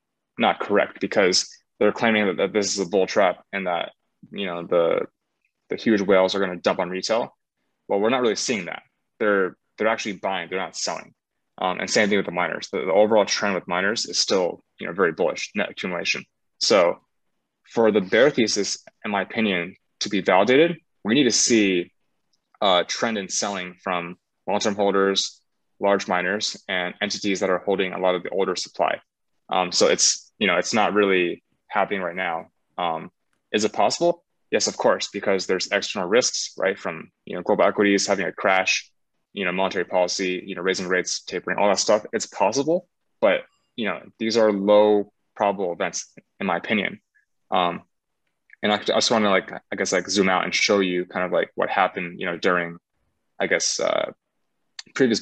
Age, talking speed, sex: 20-39, 190 wpm, male